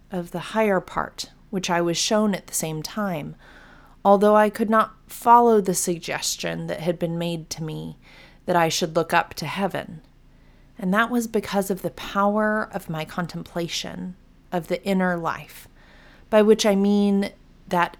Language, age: English, 30-49